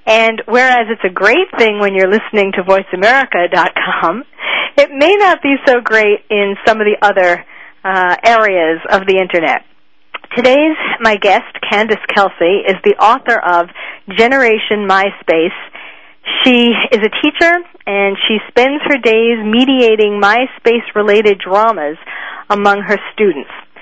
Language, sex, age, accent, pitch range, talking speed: English, female, 40-59, American, 195-245 Hz, 135 wpm